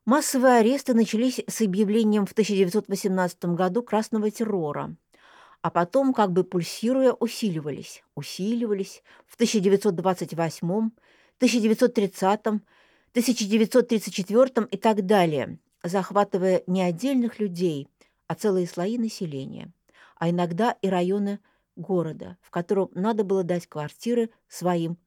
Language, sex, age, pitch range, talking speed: Russian, female, 50-69, 170-225 Hz, 105 wpm